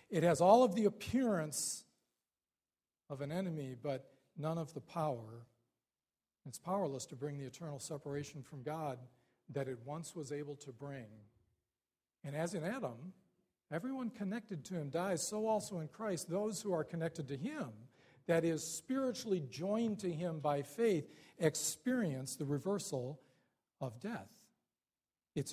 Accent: American